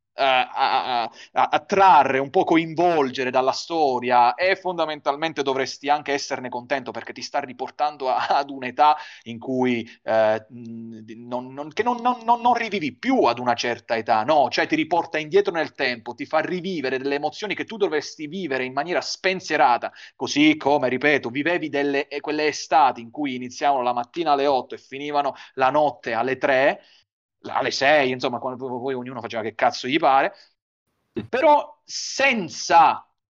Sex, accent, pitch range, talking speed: male, native, 130-200 Hz, 160 wpm